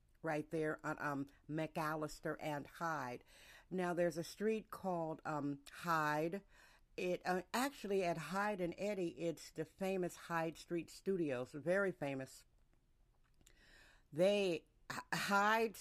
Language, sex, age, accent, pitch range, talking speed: English, female, 50-69, American, 155-180 Hz, 120 wpm